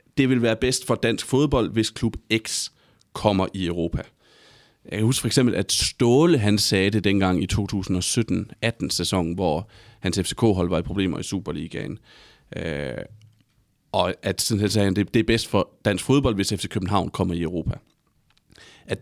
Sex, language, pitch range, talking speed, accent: male, Danish, 95-115 Hz, 175 wpm, native